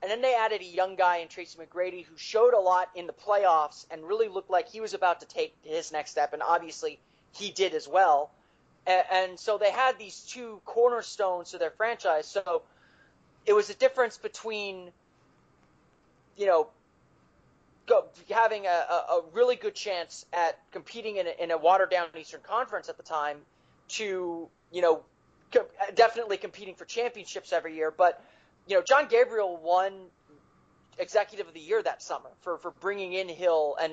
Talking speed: 175 wpm